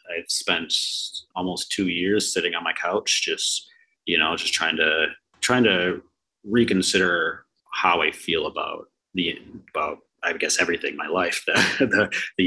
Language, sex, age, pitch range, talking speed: English, male, 30-49, 90-105 Hz, 155 wpm